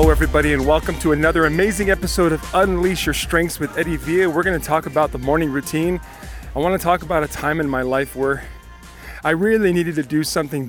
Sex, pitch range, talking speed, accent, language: male, 145-175 Hz, 225 wpm, American, English